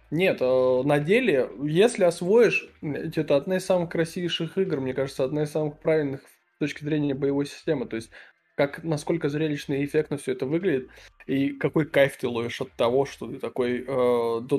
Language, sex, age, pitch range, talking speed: Russian, male, 20-39, 130-160 Hz, 185 wpm